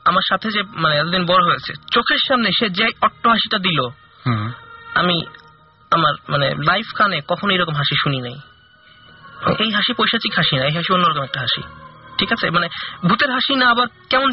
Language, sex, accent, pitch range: Bengali, male, native, 155-230 Hz